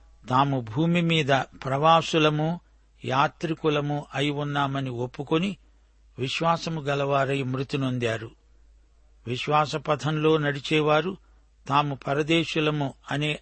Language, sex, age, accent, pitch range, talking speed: Telugu, male, 60-79, native, 130-155 Hz, 70 wpm